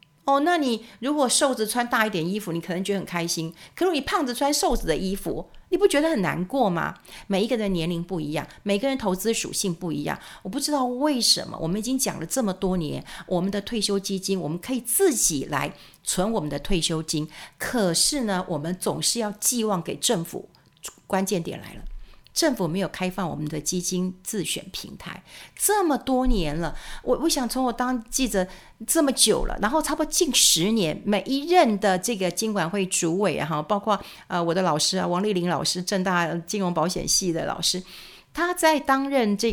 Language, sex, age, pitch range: Chinese, female, 50-69, 180-250 Hz